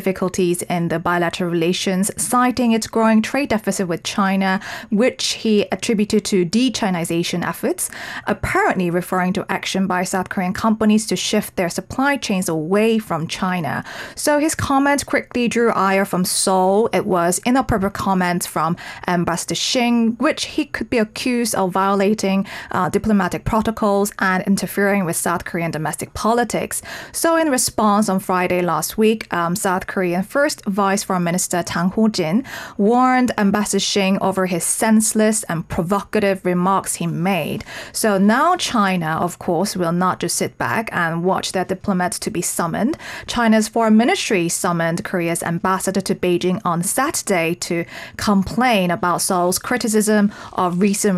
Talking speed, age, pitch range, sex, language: 150 wpm, 30-49, 180-225 Hz, female, English